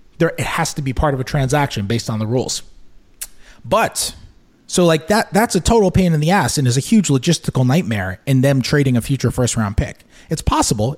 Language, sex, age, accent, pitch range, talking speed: English, male, 30-49, American, 130-195 Hz, 215 wpm